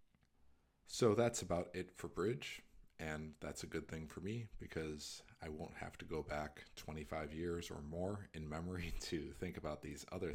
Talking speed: 180 wpm